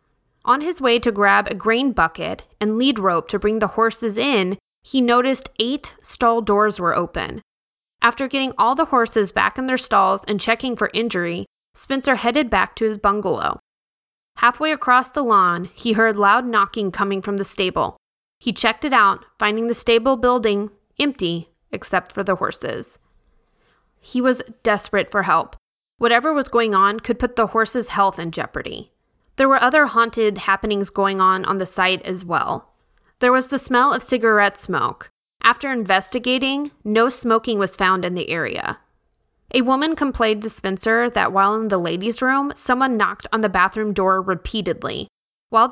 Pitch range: 195-250 Hz